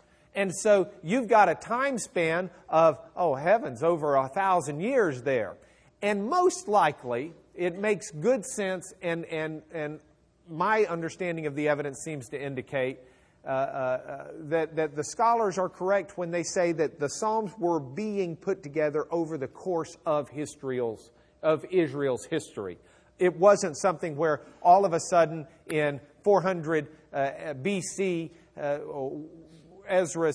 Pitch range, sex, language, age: 140-180 Hz, male, English, 50-69